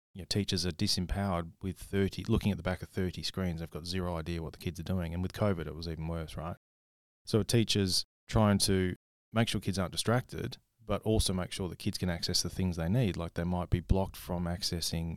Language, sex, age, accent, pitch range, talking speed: English, male, 30-49, Australian, 85-100 Hz, 235 wpm